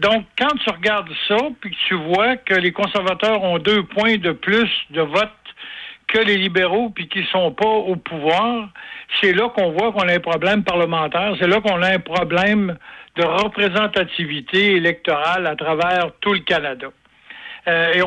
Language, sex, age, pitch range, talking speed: French, male, 60-79, 170-210 Hz, 180 wpm